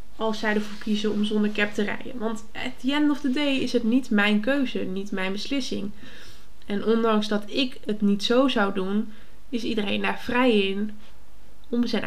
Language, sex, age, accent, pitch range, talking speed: Dutch, female, 20-39, Dutch, 200-235 Hz, 200 wpm